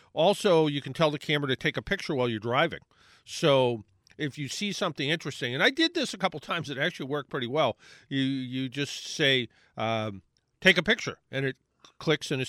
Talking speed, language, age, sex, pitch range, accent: 210 wpm, English, 50-69, male, 125-170 Hz, American